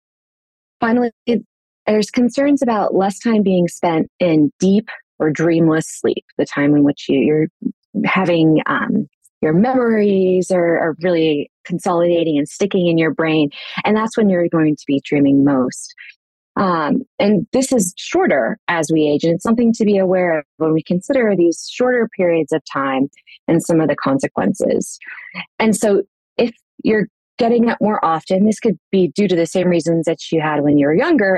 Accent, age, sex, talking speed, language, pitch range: American, 30-49, female, 175 wpm, English, 160-220 Hz